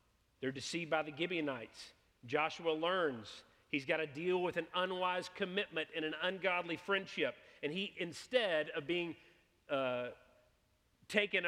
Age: 40-59